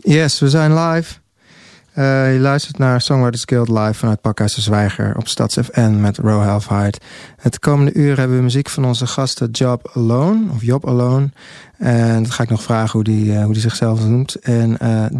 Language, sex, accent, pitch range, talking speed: Dutch, male, Dutch, 115-140 Hz, 195 wpm